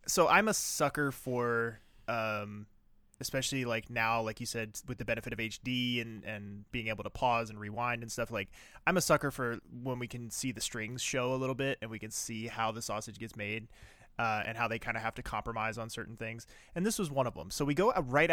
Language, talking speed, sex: English, 240 wpm, male